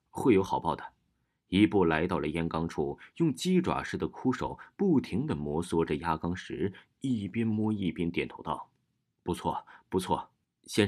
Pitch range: 80-95 Hz